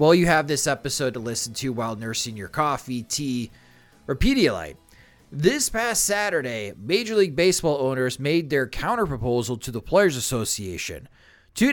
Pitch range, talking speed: 125-170 Hz, 155 wpm